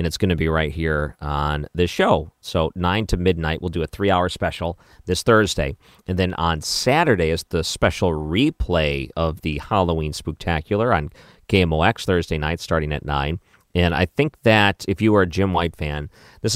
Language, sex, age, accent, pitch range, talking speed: English, male, 40-59, American, 80-100 Hz, 190 wpm